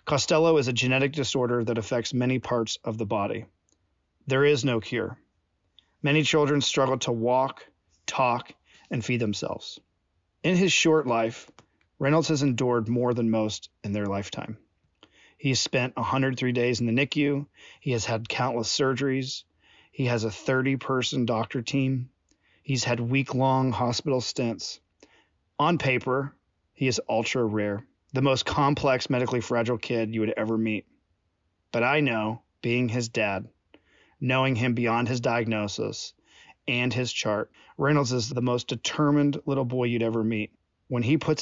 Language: English